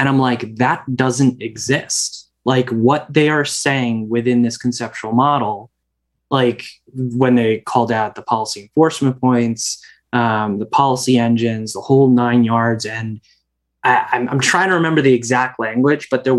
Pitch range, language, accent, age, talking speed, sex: 115-135 Hz, English, American, 20-39, 160 wpm, male